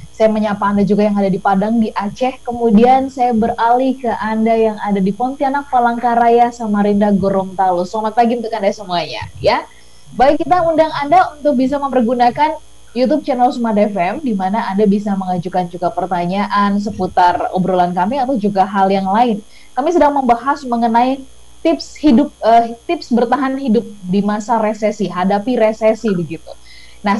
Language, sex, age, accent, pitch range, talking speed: English, female, 20-39, Indonesian, 210-260 Hz, 155 wpm